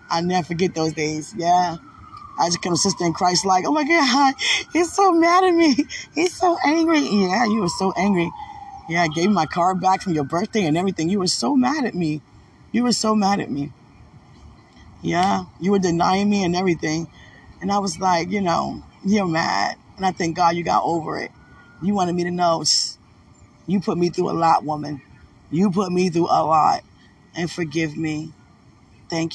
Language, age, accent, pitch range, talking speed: English, 20-39, American, 160-185 Hz, 200 wpm